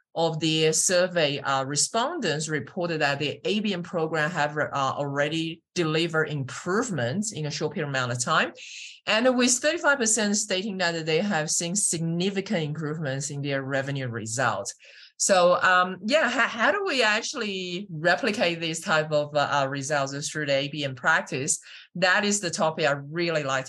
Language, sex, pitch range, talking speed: English, male, 155-205 Hz, 150 wpm